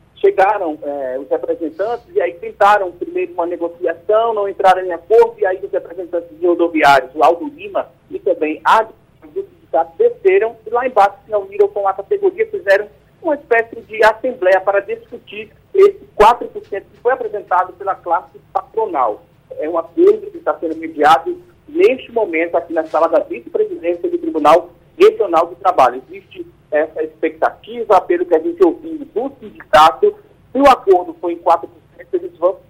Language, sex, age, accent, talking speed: Portuguese, male, 40-59, Brazilian, 160 wpm